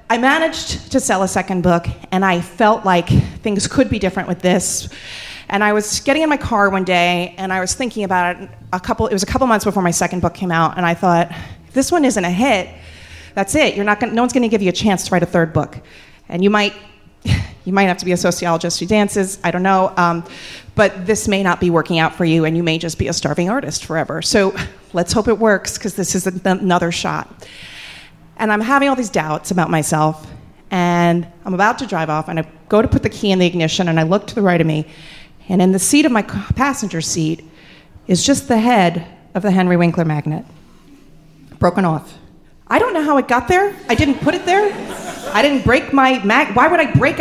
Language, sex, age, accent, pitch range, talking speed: English, female, 30-49, American, 175-250 Hz, 235 wpm